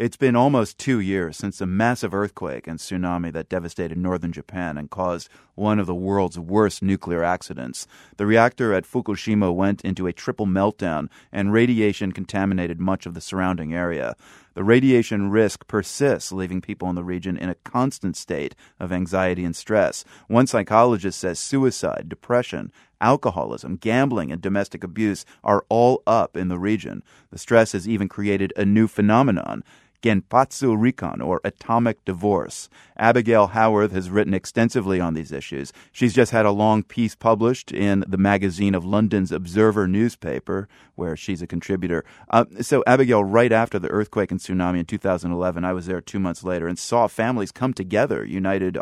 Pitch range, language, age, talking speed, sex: 90-115 Hz, English, 30-49, 165 wpm, male